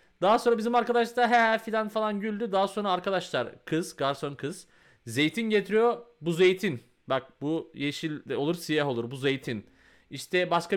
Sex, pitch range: male, 145-195 Hz